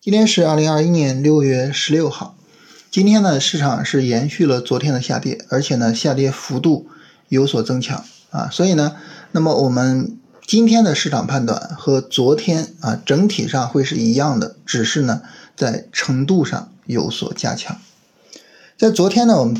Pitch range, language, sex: 130-180 Hz, Chinese, male